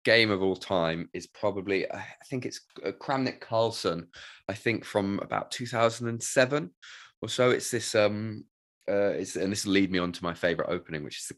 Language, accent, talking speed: English, British, 190 wpm